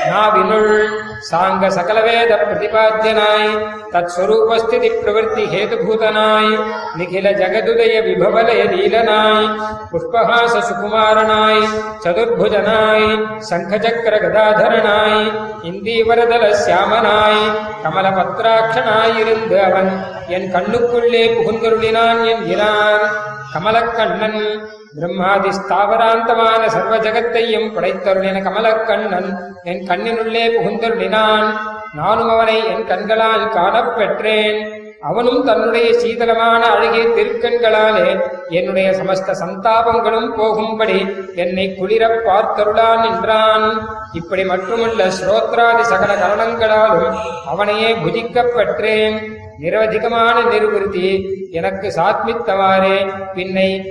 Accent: native